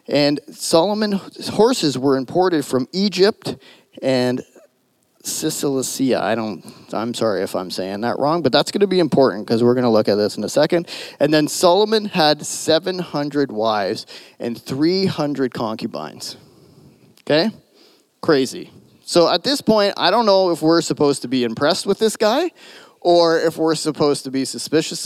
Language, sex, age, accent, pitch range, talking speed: English, male, 30-49, American, 130-180 Hz, 165 wpm